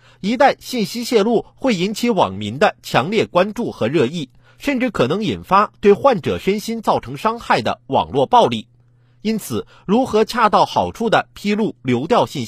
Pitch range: 140-230 Hz